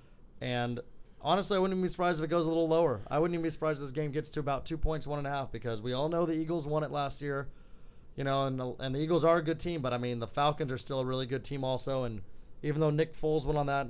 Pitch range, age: 120-150 Hz, 30-49